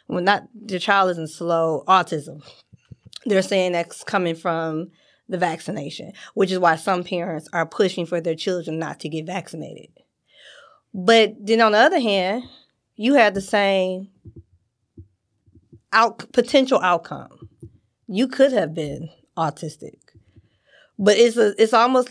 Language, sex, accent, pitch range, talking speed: English, female, American, 165-215 Hz, 145 wpm